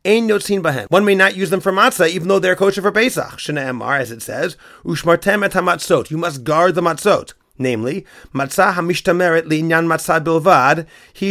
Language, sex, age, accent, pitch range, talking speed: English, male, 30-49, American, 140-185 Hz, 180 wpm